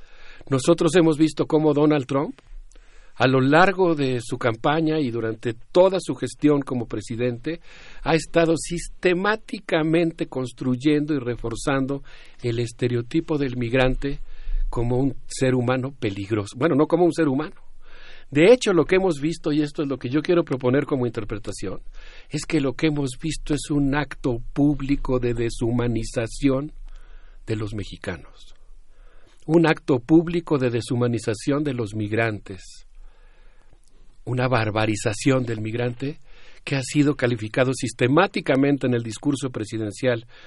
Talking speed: 135 wpm